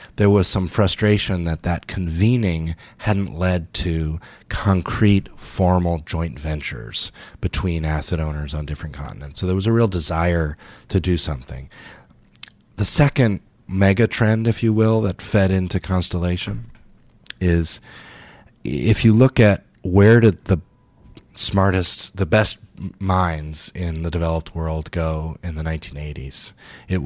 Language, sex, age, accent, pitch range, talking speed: English, male, 30-49, American, 80-100 Hz, 135 wpm